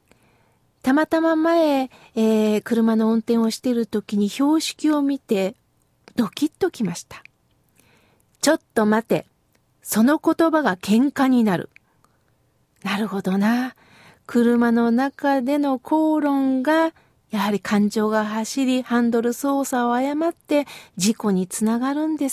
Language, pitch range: Japanese, 235-315 Hz